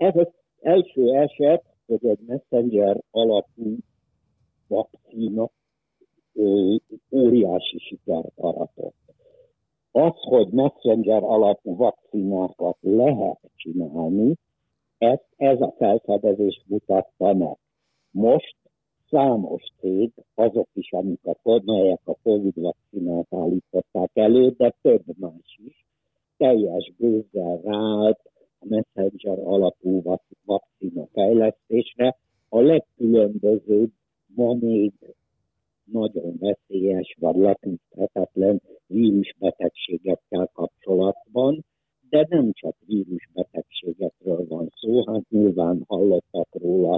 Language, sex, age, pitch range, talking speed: Hungarian, male, 60-79, 95-120 Hz, 90 wpm